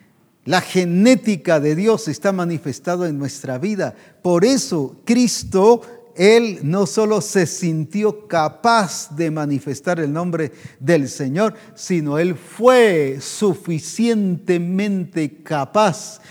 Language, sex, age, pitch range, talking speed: English, male, 50-69, 140-195 Hz, 105 wpm